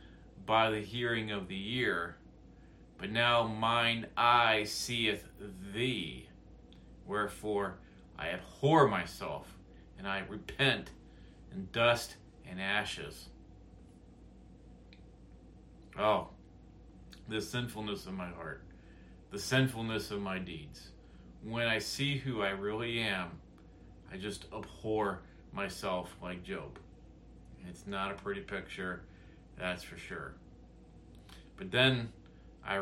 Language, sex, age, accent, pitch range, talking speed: English, male, 40-59, American, 90-115 Hz, 105 wpm